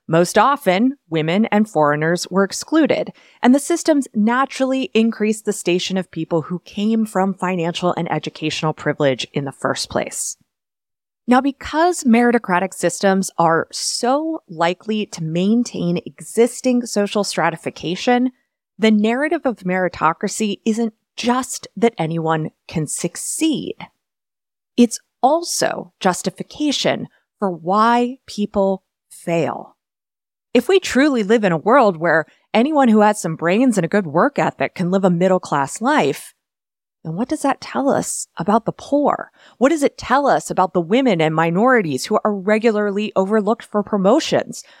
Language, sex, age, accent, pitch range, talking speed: English, female, 30-49, American, 180-250 Hz, 140 wpm